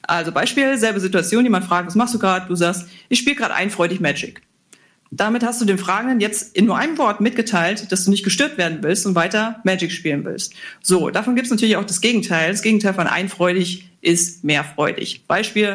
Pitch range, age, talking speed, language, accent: 175-225 Hz, 40-59, 205 wpm, German, German